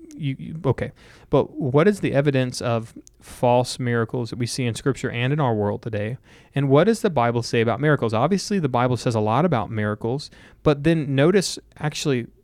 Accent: American